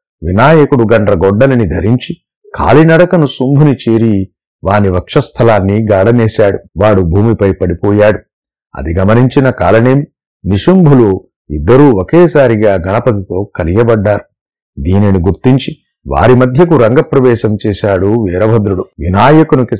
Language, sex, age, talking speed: Telugu, male, 50-69, 85 wpm